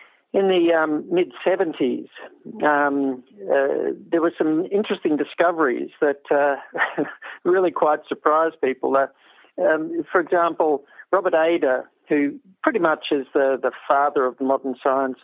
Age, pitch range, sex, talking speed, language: 50-69, 130-160 Hz, male, 125 wpm, English